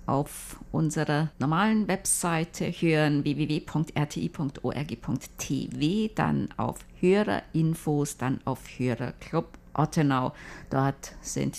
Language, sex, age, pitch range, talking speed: German, female, 50-69, 145-185 Hz, 80 wpm